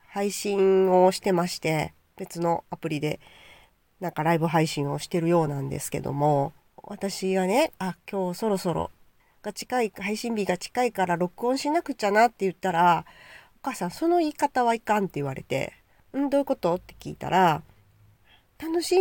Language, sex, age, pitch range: Japanese, female, 40-59, 155-225 Hz